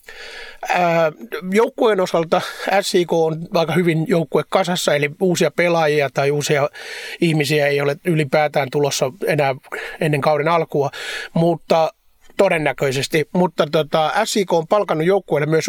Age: 30-49